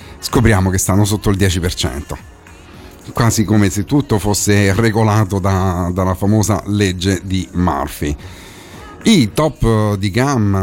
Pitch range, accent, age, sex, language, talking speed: 85-110 Hz, native, 40-59, male, Italian, 125 wpm